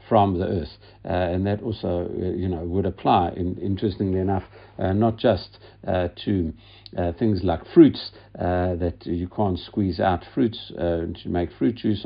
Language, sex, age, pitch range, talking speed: English, male, 60-79, 90-110 Hz, 180 wpm